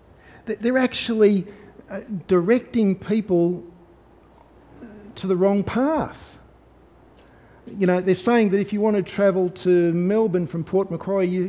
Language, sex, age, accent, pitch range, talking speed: English, male, 50-69, Australian, 135-210 Hz, 125 wpm